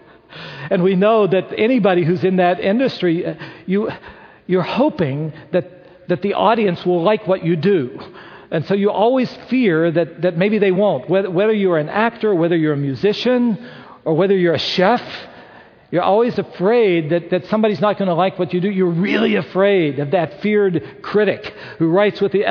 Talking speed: 185 wpm